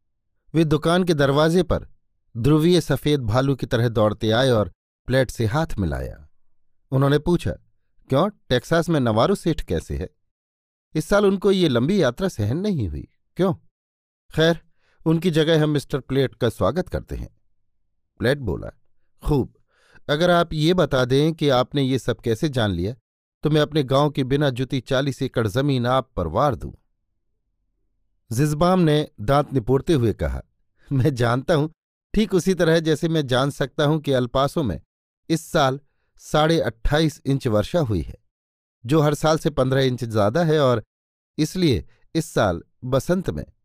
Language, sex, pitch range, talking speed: Hindi, male, 110-155 Hz, 160 wpm